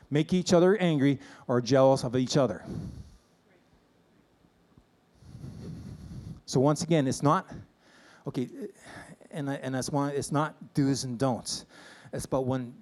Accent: American